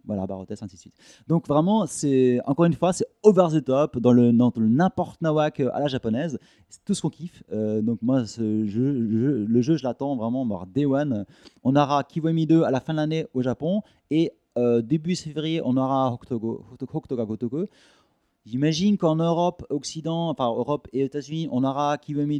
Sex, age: male, 30-49